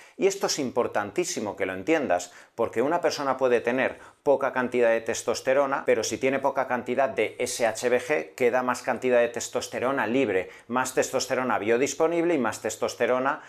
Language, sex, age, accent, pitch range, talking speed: Spanish, male, 40-59, Spanish, 115-145 Hz, 155 wpm